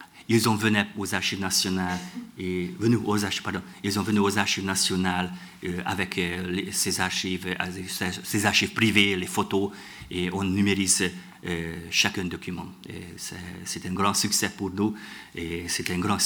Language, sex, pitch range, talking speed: French, male, 95-110 Hz, 170 wpm